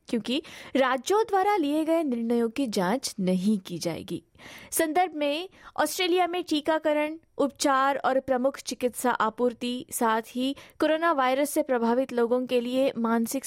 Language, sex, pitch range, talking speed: Hindi, female, 235-300 Hz, 140 wpm